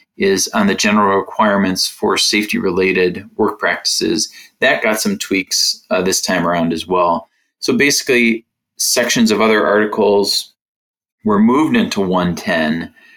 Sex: male